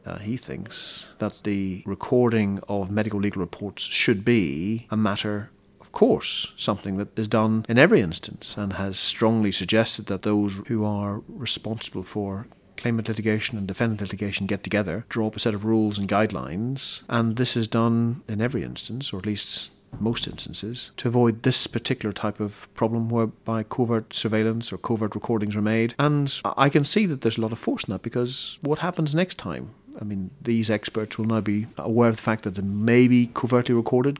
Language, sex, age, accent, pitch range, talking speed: English, male, 40-59, Irish, 105-120 Hz, 190 wpm